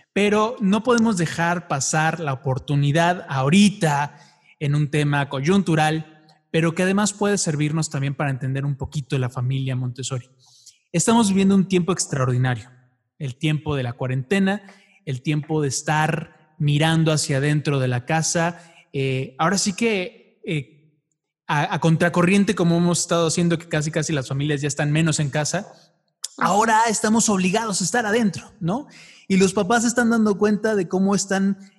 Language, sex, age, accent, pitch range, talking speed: Spanish, male, 20-39, Mexican, 145-195 Hz, 155 wpm